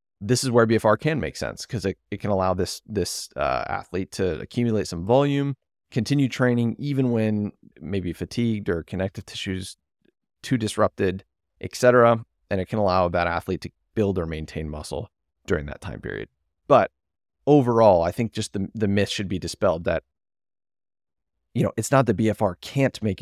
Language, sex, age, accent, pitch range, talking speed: English, male, 30-49, American, 90-115 Hz, 175 wpm